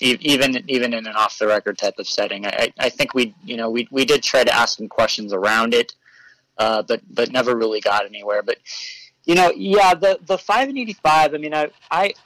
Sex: male